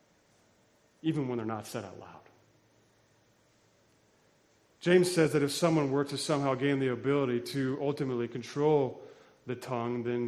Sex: male